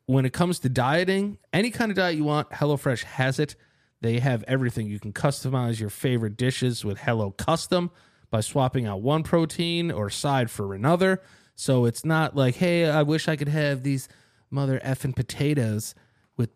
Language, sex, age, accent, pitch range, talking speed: English, male, 30-49, American, 115-150 Hz, 180 wpm